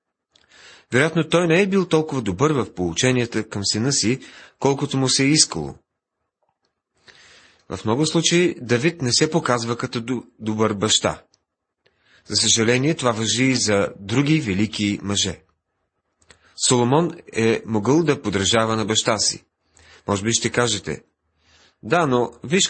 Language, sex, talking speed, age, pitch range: Bulgarian, male, 135 wpm, 40-59, 105-140 Hz